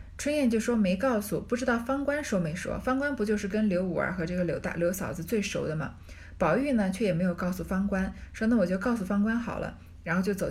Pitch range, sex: 155-230 Hz, female